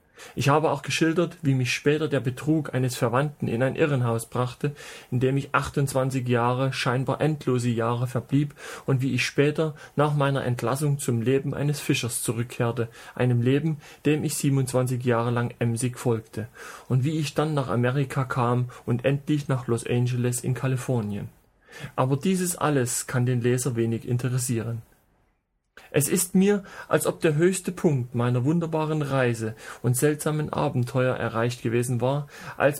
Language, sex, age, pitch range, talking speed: German, male, 40-59, 125-155 Hz, 155 wpm